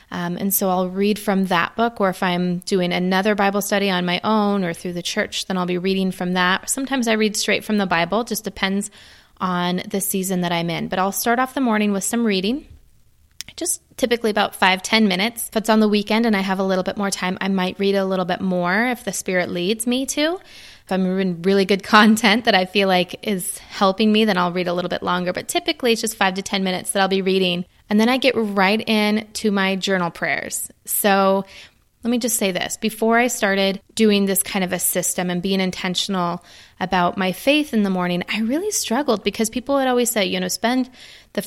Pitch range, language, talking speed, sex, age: 185-220 Hz, English, 235 wpm, female, 20-39